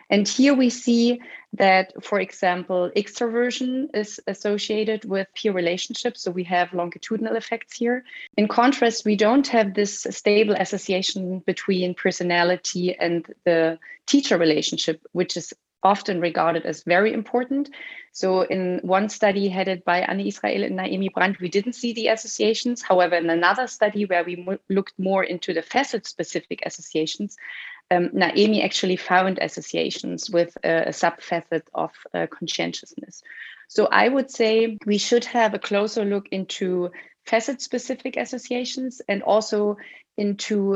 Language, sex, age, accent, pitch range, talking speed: English, female, 30-49, German, 180-225 Hz, 140 wpm